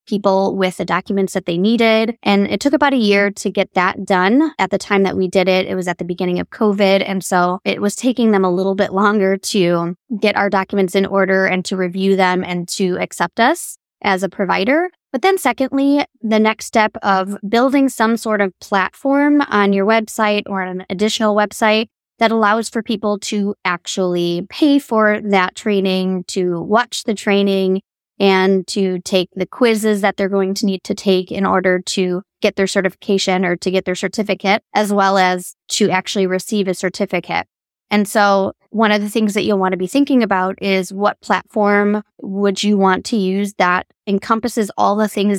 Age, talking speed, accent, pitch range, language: 20-39, 195 wpm, American, 190-220 Hz, English